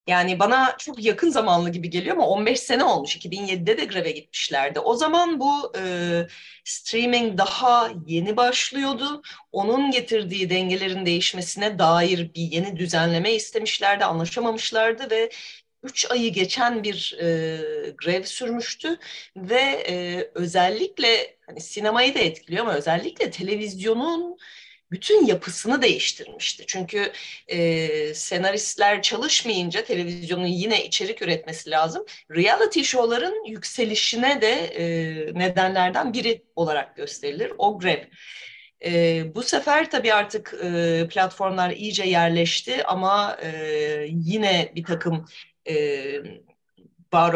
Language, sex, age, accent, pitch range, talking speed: Turkish, female, 30-49, native, 170-240 Hz, 105 wpm